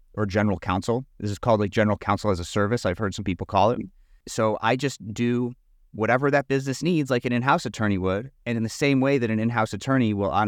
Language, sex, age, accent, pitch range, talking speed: English, male, 30-49, American, 100-125 Hz, 240 wpm